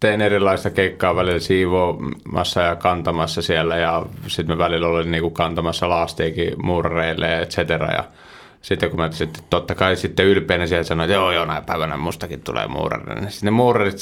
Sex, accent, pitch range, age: male, native, 85-100 Hz, 30-49